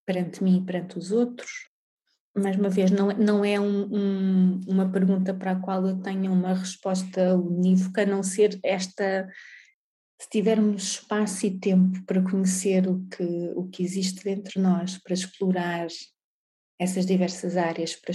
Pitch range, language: 185-200 Hz, Portuguese